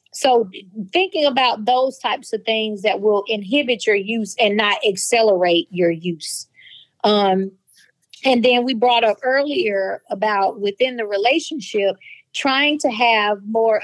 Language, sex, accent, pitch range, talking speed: English, female, American, 205-265 Hz, 140 wpm